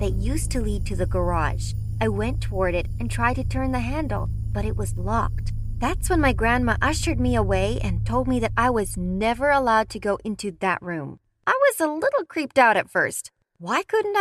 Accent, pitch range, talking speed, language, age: American, 185-295 Hz, 215 wpm, English, 30-49